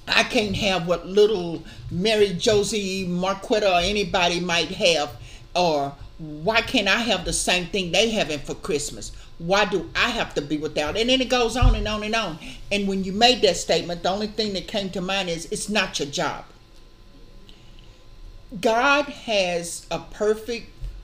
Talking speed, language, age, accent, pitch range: 175 wpm, English, 50-69, American, 160-225 Hz